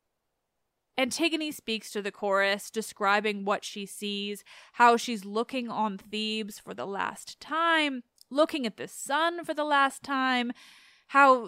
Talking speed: 140 wpm